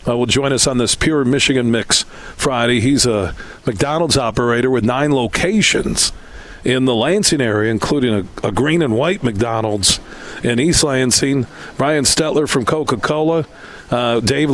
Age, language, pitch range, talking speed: 40-59, English, 120-140 Hz, 150 wpm